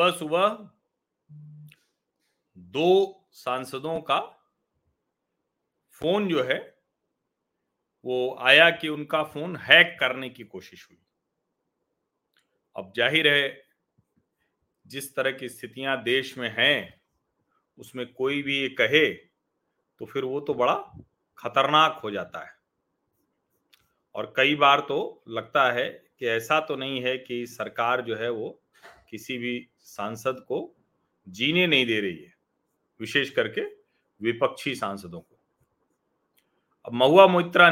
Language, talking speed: Hindi, 115 wpm